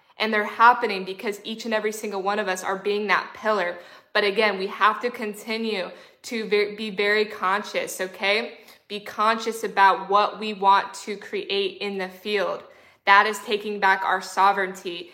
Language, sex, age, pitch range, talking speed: English, female, 20-39, 200-225 Hz, 175 wpm